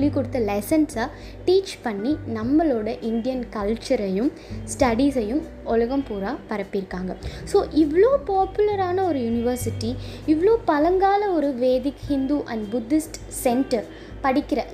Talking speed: 95 wpm